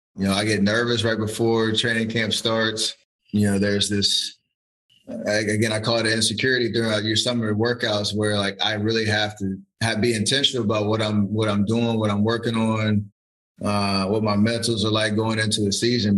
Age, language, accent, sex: 20-39, English, American, male